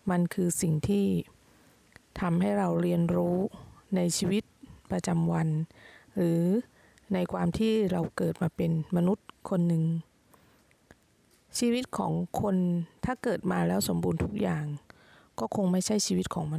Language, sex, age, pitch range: Thai, female, 20-39, 170-205 Hz